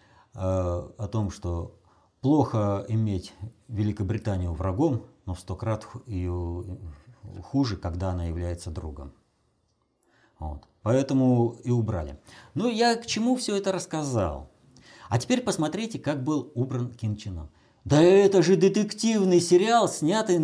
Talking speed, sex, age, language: 115 wpm, male, 50-69, Russian